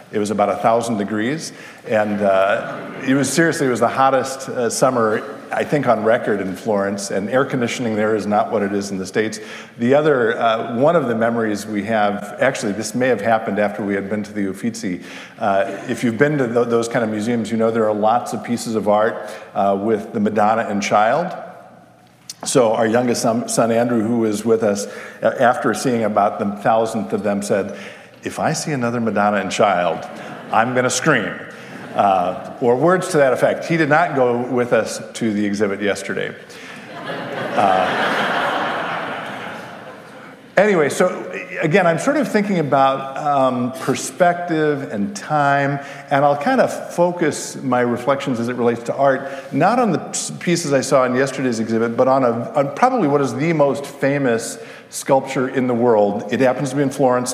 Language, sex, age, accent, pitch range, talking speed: English, male, 50-69, American, 115-145 Hz, 185 wpm